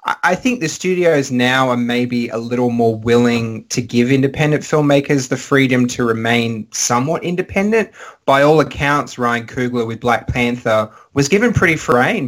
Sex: male